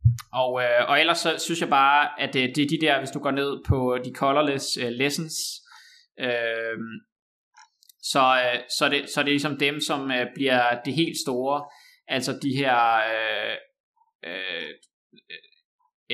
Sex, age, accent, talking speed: male, 20-39, native, 150 wpm